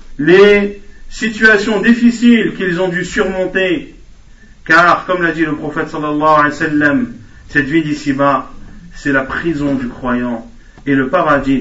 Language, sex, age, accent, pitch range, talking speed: French, male, 40-59, French, 150-215 Hz, 145 wpm